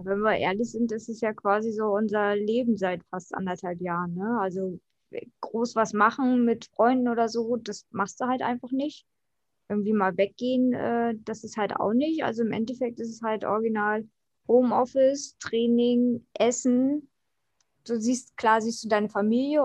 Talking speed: 170 wpm